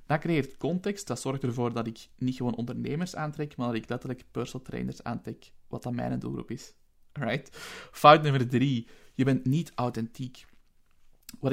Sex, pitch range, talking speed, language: male, 120-140 Hz, 170 wpm, Dutch